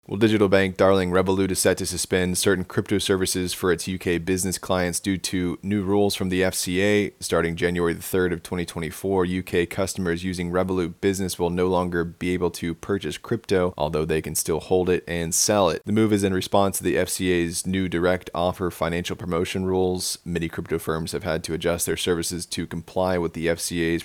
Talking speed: 195 wpm